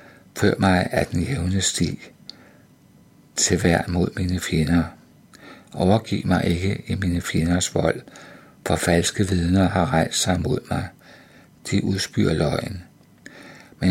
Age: 60-79